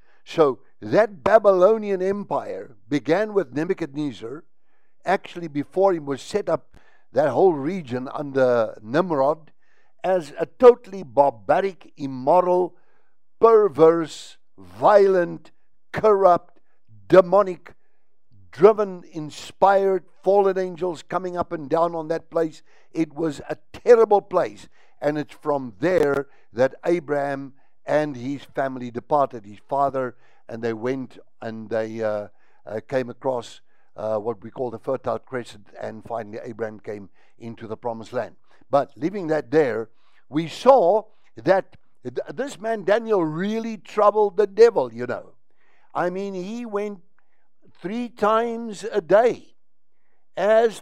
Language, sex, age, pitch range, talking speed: English, male, 60-79, 130-210 Hz, 125 wpm